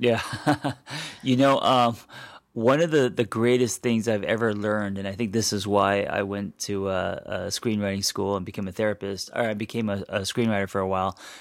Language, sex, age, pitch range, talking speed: English, male, 30-49, 105-120 Hz, 205 wpm